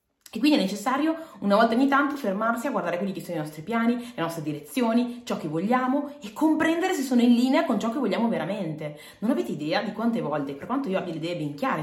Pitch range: 165-250 Hz